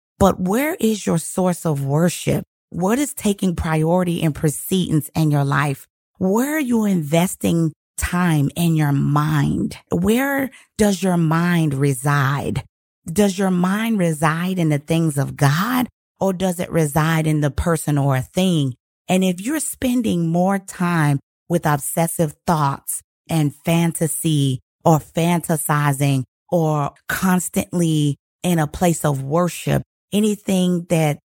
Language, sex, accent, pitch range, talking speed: English, female, American, 150-195 Hz, 135 wpm